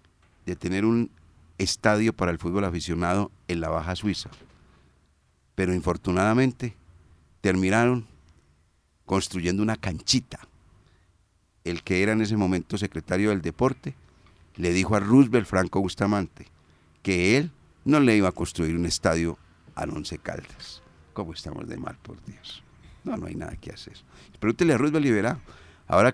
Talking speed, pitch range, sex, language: 145 wpm, 85-110 Hz, male, Spanish